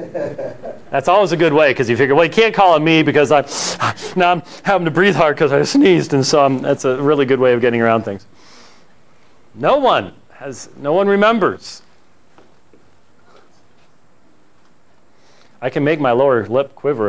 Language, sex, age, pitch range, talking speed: English, male, 40-59, 125-160 Hz, 170 wpm